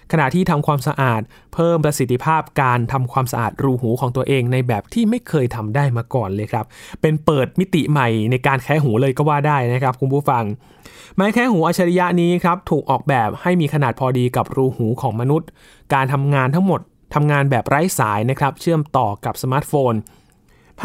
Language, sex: Thai, male